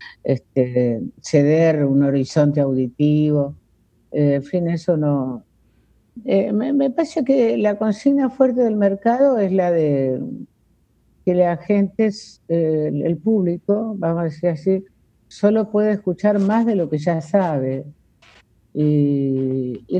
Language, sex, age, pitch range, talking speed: Spanish, female, 50-69, 140-200 Hz, 130 wpm